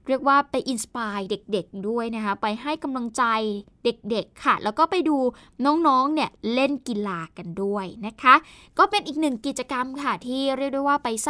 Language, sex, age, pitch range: Thai, female, 10-29, 215-285 Hz